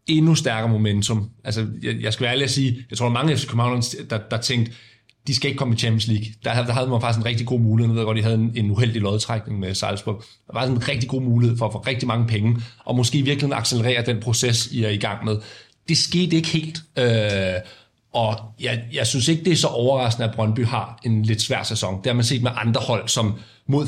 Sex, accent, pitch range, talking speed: male, native, 110-130 Hz, 250 wpm